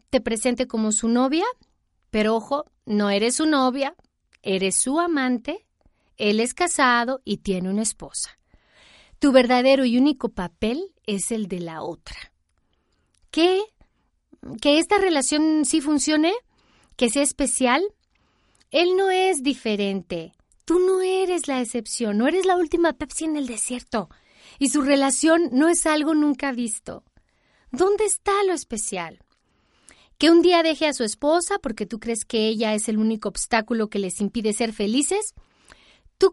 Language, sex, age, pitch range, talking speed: Spanish, female, 40-59, 215-305 Hz, 150 wpm